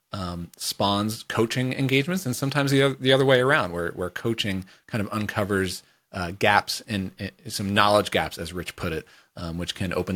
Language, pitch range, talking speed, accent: English, 95-120 Hz, 190 wpm, American